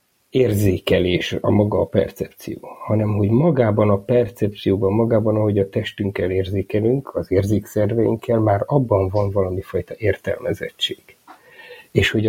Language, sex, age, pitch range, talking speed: Hungarian, male, 50-69, 95-120 Hz, 115 wpm